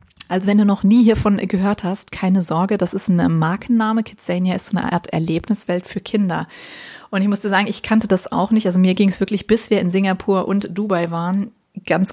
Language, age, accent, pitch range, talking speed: German, 30-49, German, 175-205 Hz, 225 wpm